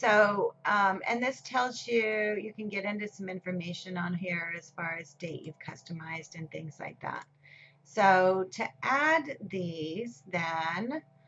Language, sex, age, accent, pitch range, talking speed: English, female, 30-49, American, 165-200 Hz, 155 wpm